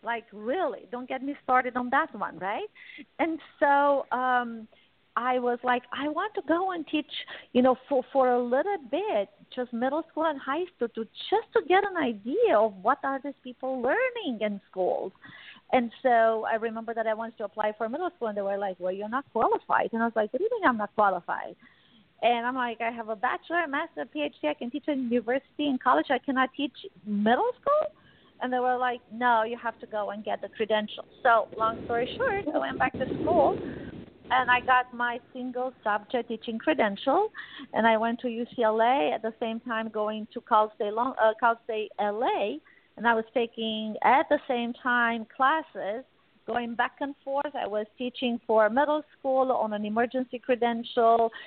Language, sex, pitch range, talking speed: English, female, 225-280 Hz, 200 wpm